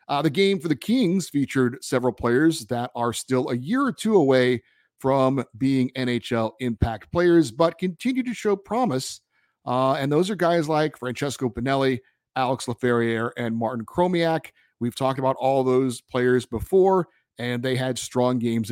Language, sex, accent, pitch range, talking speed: English, male, American, 120-145 Hz, 165 wpm